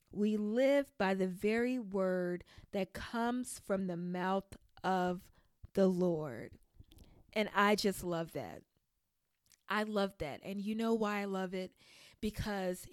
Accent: American